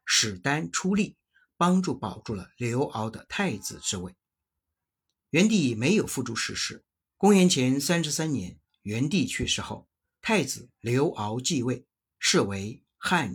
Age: 50-69